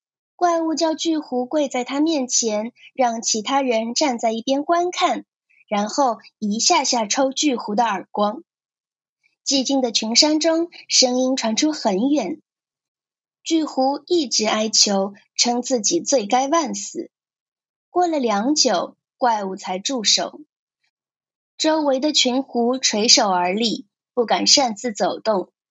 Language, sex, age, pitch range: Chinese, female, 20-39, 230-315 Hz